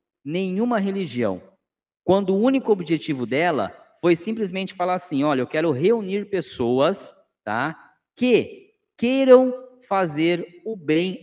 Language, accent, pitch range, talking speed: Portuguese, Brazilian, 155-205 Hz, 120 wpm